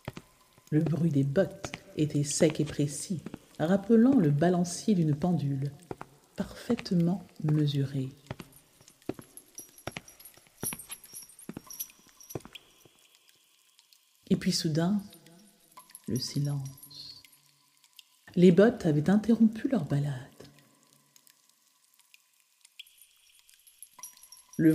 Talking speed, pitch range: 65 wpm, 145-195 Hz